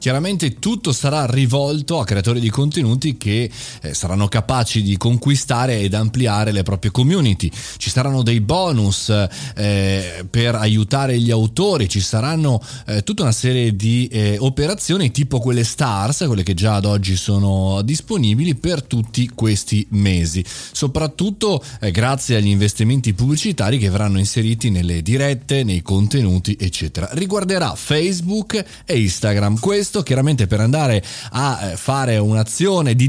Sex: male